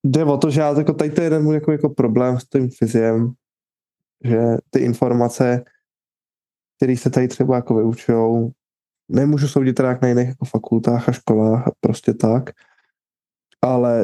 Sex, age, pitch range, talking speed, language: male, 20-39, 120-135 Hz, 160 wpm, Czech